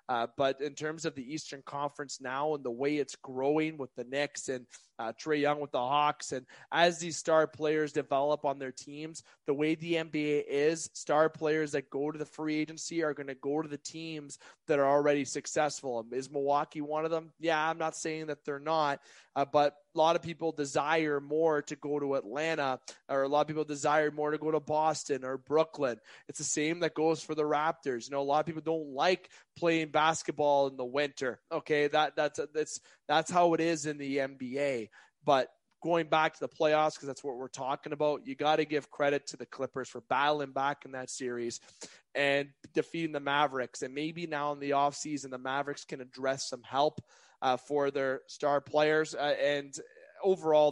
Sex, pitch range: male, 140-155 Hz